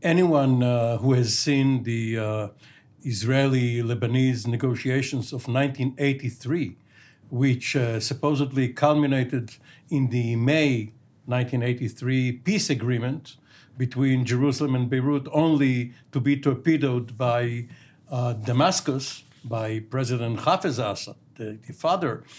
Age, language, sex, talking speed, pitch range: 60-79, English, male, 105 wpm, 125-145 Hz